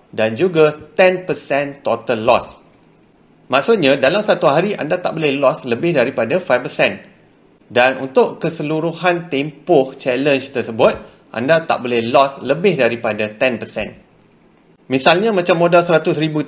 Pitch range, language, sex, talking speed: 120-170 Hz, Malay, male, 120 wpm